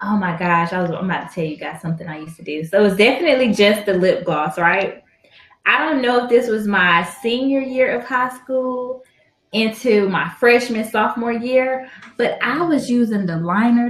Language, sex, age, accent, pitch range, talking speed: English, female, 20-39, American, 180-245 Hz, 205 wpm